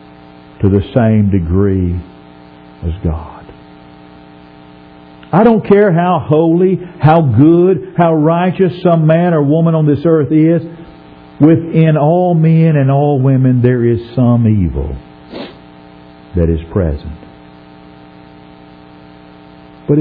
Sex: male